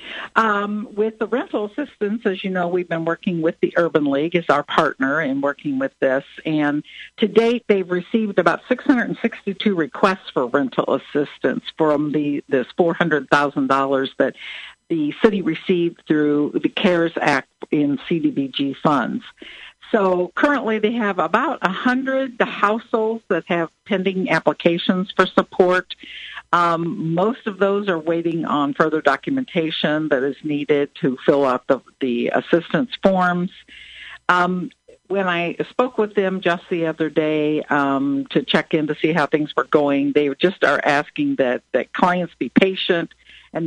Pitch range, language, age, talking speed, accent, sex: 150-215 Hz, English, 60-79, 150 wpm, American, female